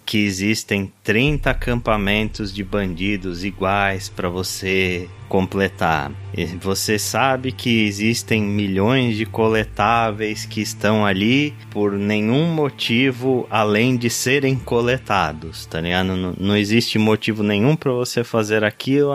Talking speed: 120 wpm